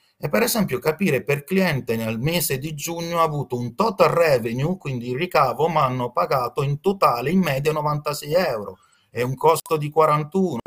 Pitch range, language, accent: 130-180 Hz, Italian, native